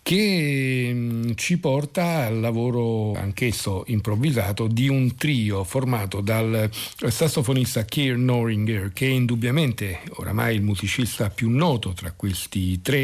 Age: 50-69